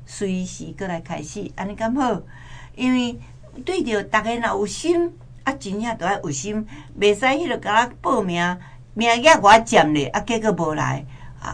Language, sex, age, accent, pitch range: Chinese, female, 60-79, American, 150-215 Hz